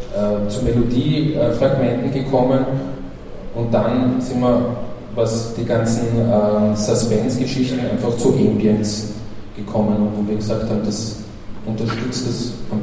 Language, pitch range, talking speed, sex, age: German, 110-125 Hz, 115 wpm, male, 20-39